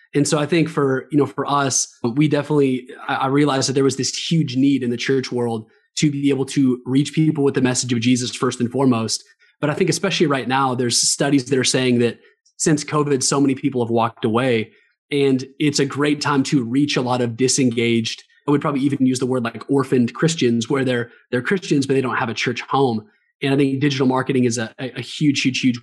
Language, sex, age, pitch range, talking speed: English, male, 20-39, 125-145 Hz, 230 wpm